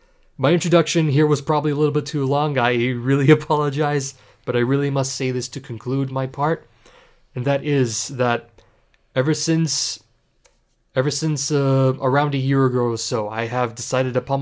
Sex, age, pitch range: male, 20-39, 120-140 Hz